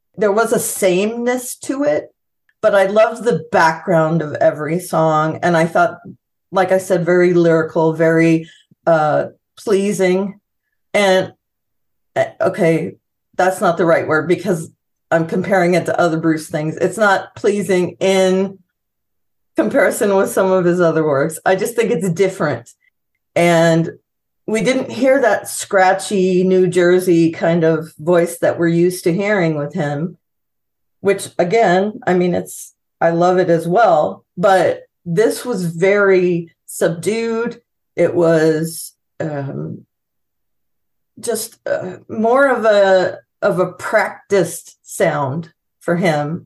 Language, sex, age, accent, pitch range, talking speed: English, female, 40-59, American, 165-200 Hz, 135 wpm